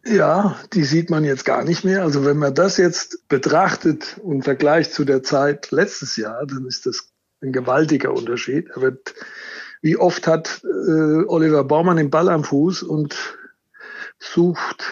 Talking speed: 160 wpm